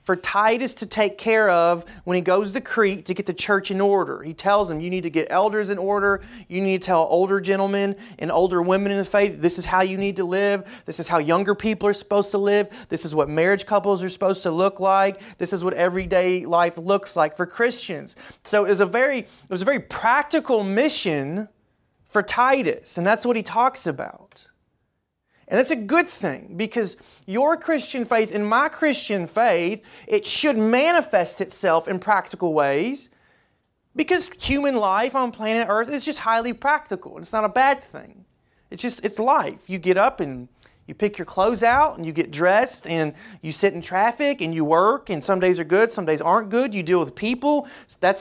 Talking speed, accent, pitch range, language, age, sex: 210 wpm, American, 185-235 Hz, English, 30-49, male